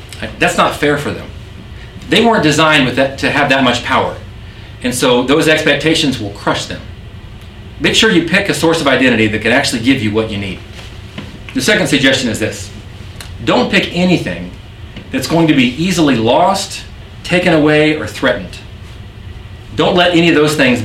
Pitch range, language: 100-145 Hz, English